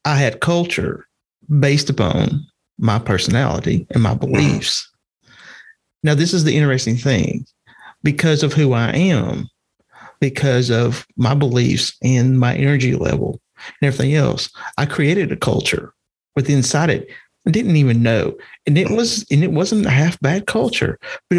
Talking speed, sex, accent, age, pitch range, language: 150 wpm, male, American, 40-59, 125-155 Hz, English